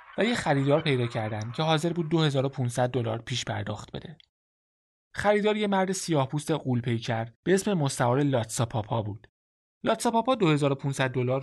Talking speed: 165 wpm